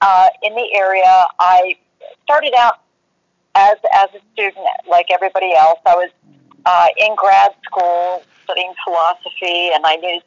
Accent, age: American, 40-59